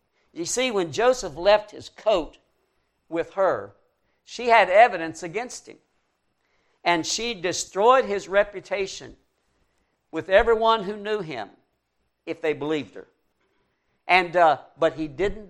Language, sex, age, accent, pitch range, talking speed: English, male, 60-79, American, 145-195 Hz, 130 wpm